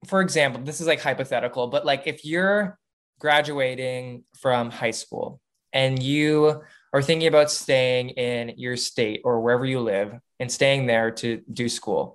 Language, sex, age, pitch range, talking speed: English, male, 20-39, 120-150 Hz, 165 wpm